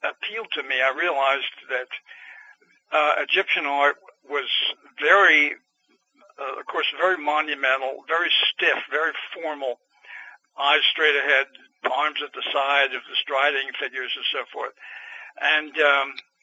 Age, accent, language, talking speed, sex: 60-79, American, English, 130 wpm, male